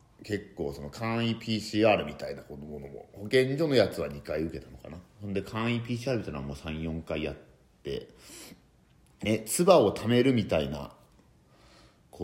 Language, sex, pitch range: Japanese, male, 75-110 Hz